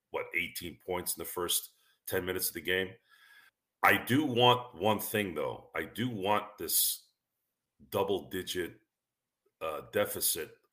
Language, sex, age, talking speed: English, male, 40-59, 130 wpm